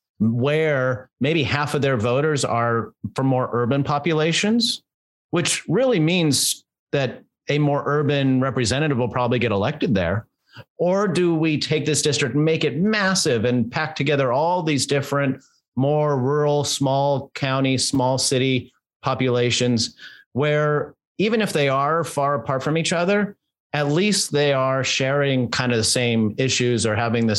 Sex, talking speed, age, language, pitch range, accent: male, 155 wpm, 30-49, English, 120-145 Hz, American